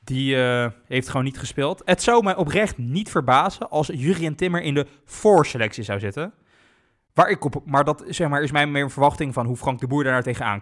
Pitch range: 125-165 Hz